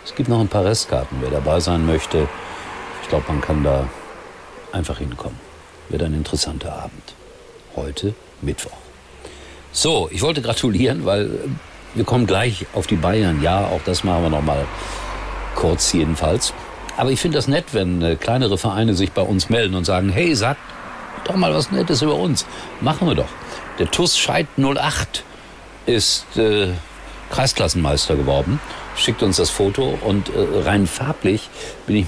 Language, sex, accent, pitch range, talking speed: German, male, German, 80-110 Hz, 160 wpm